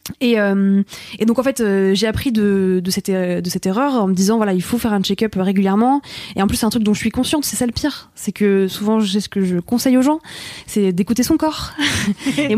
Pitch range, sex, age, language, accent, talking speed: 185-230 Hz, female, 20-39, French, French, 260 wpm